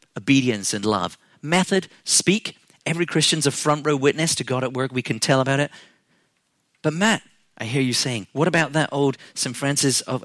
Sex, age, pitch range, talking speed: male, 40-59, 120-160 Hz, 195 wpm